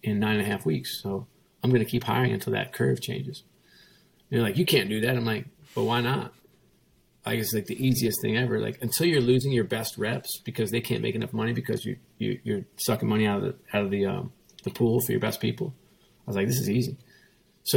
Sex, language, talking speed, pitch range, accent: male, English, 255 wpm, 105-125 Hz, American